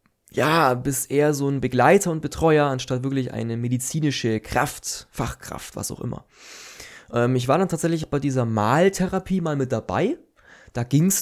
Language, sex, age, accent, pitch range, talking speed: German, male, 20-39, German, 115-145 Hz, 160 wpm